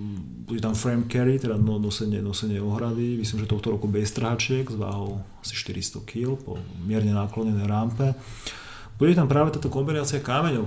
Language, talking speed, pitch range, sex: Czech, 165 wpm, 105-120 Hz, male